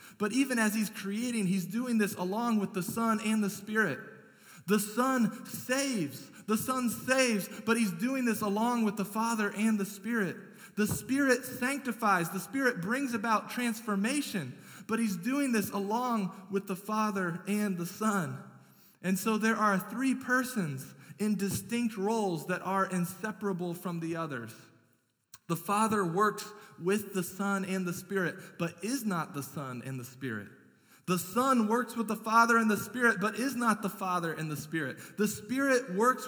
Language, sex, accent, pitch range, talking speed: English, male, American, 180-225 Hz, 170 wpm